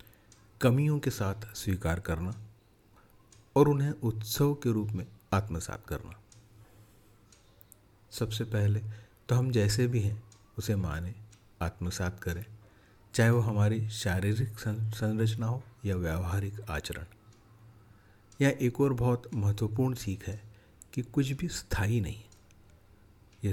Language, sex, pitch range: Hindi, male, 100-115 Hz